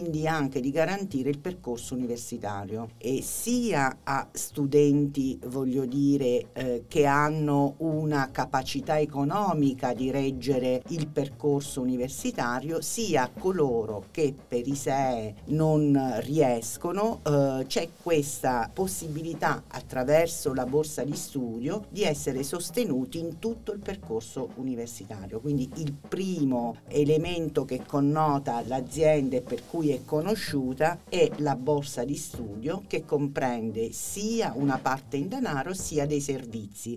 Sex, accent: female, native